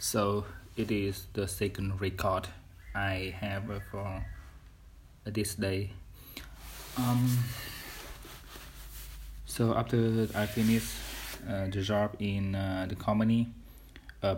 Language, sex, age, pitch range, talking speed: English, male, 20-39, 90-110 Hz, 100 wpm